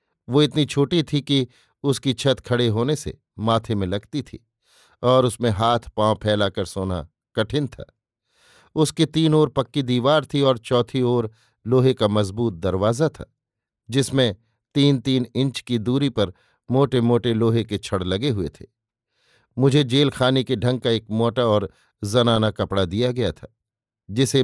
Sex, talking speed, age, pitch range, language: male, 160 wpm, 50-69, 110-130 Hz, Hindi